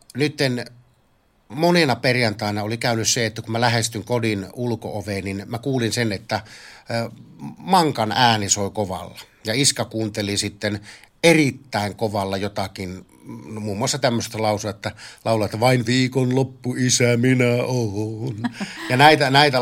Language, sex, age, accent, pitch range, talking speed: Finnish, male, 60-79, native, 105-135 Hz, 140 wpm